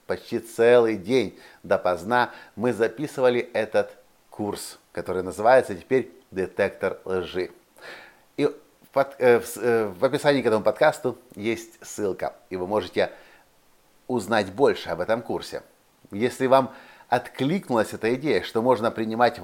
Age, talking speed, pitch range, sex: 50-69, 125 wpm, 105-135 Hz, male